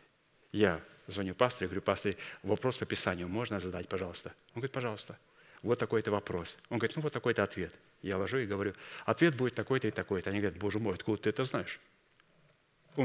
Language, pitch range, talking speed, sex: Russian, 100-120 Hz, 195 wpm, male